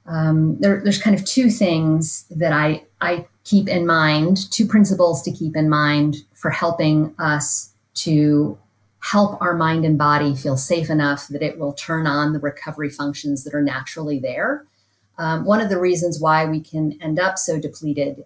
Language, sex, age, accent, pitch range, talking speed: English, female, 30-49, American, 145-175 Hz, 180 wpm